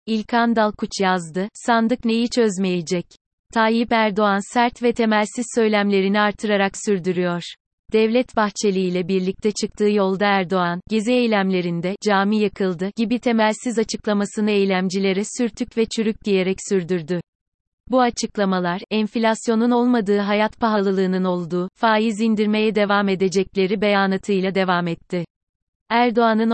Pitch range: 190-230 Hz